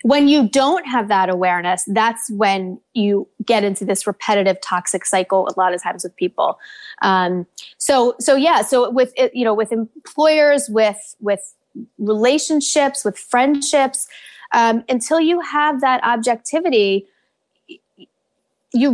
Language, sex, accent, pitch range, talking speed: English, female, American, 210-275 Hz, 135 wpm